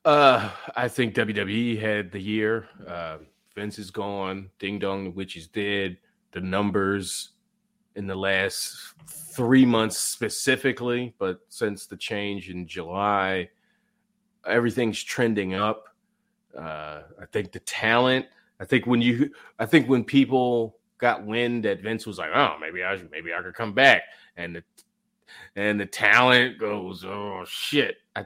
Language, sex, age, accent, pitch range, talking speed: English, male, 30-49, American, 95-145 Hz, 150 wpm